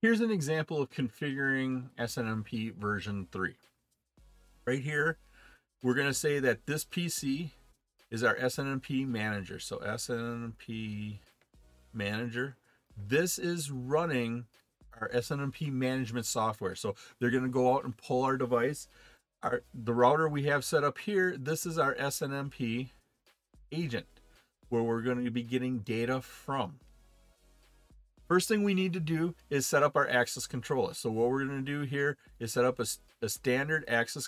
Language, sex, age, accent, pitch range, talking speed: English, male, 40-59, American, 115-140 Hz, 150 wpm